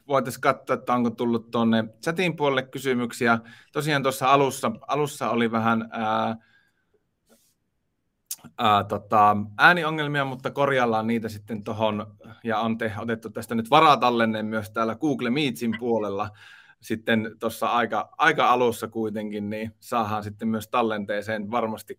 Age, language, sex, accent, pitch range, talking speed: 30-49, Finnish, male, native, 110-130 Hz, 130 wpm